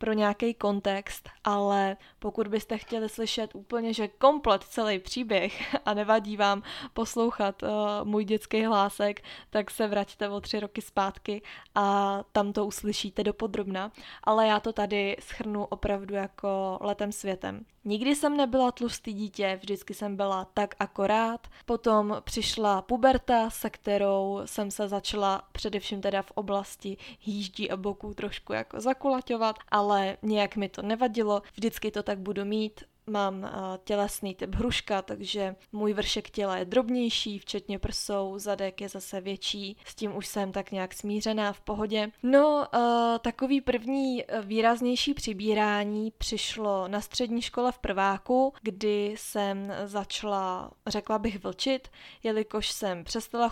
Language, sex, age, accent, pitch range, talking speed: Czech, female, 20-39, native, 200-225 Hz, 140 wpm